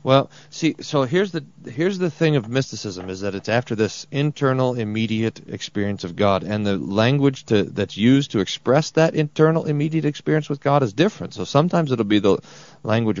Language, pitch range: English, 95-135 Hz